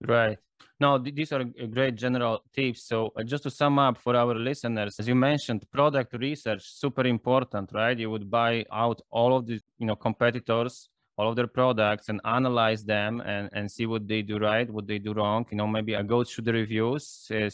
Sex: male